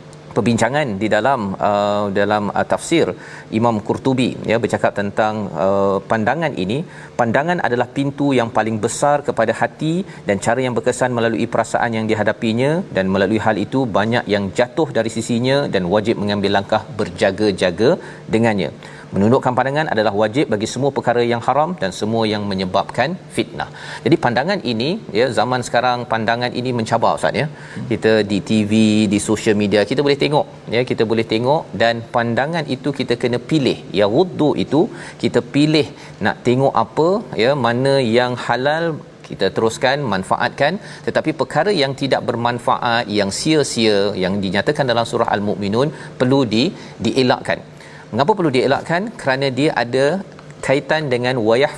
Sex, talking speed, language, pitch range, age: male, 150 wpm, Malayalam, 110-135 Hz, 40-59